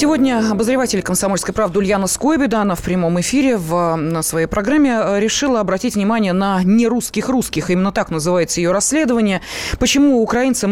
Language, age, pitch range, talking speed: Russian, 20-39, 185-235 Hz, 145 wpm